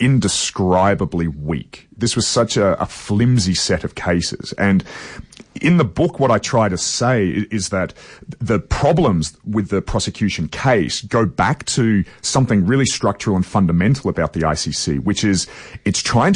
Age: 40-59